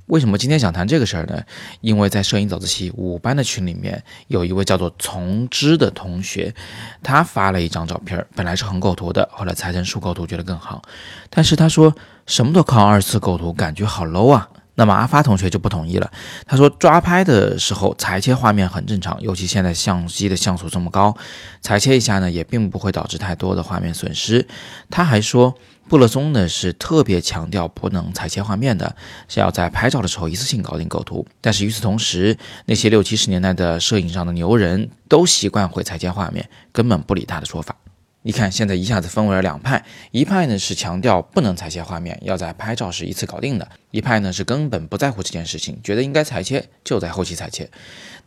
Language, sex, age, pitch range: Chinese, male, 20-39, 90-120 Hz